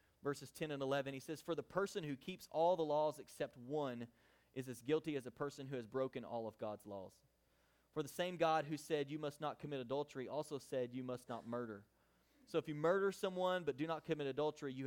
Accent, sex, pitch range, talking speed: American, male, 130-160 Hz, 230 wpm